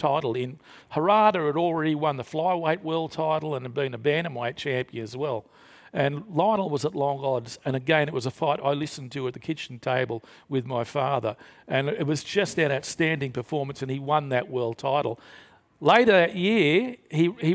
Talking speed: 200 wpm